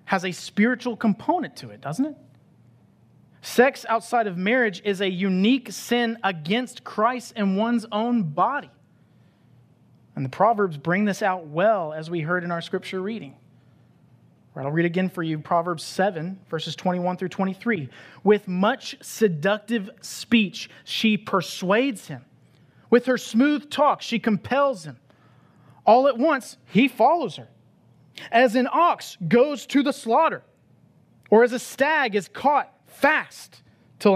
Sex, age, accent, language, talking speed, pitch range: male, 30-49, American, English, 145 wpm, 155-220 Hz